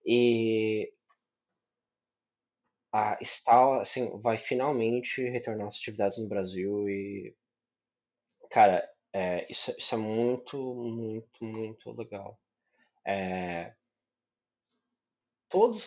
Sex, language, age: male, Portuguese, 20-39